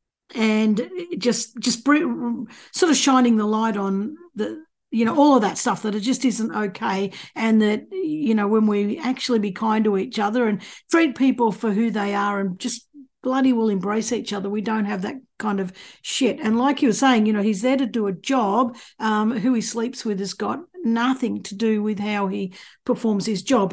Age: 50-69